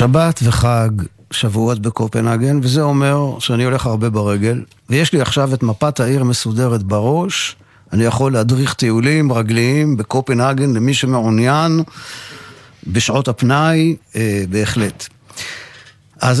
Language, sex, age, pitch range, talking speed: Hebrew, male, 50-69, 110-145 Hz, 115 wpm